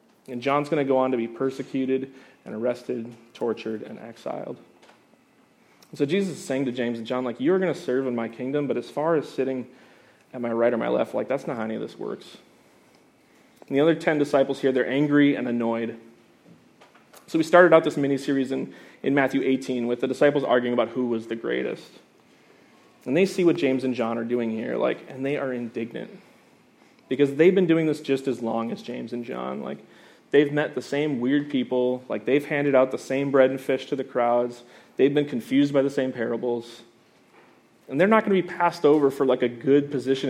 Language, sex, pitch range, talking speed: English, male, 120-150 Hz, 215 wpm